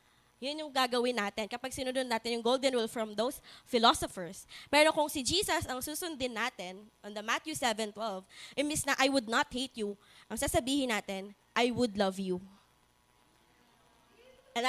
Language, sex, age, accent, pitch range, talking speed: English, female, 20-39, Filipino, 230-290 Hz, 160 wpm